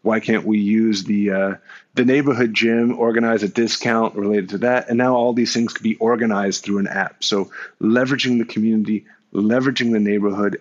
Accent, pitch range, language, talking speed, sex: American, 100-115 Hz, English, 185 wpm, male